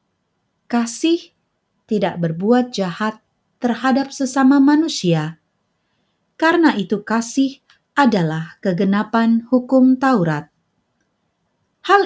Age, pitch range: 30-49, 190-280 Hz